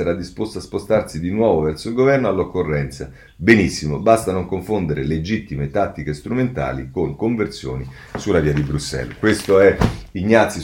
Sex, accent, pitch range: male, native, 95-135 Hz